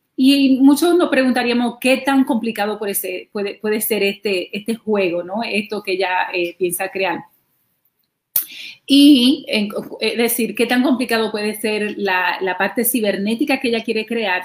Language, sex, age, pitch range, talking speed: Spanish, female, 30-49, 195-240 Hz, 160 wpm